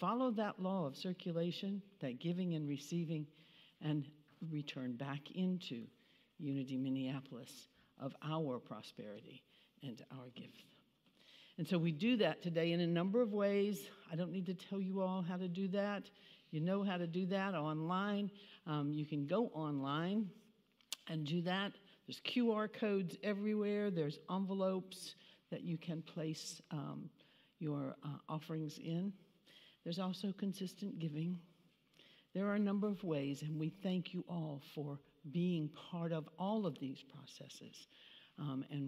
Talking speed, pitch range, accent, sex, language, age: 150 wpm, 155-195 Hz, American, female, English, 60-79